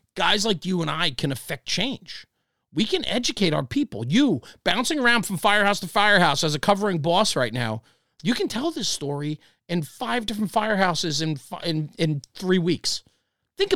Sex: male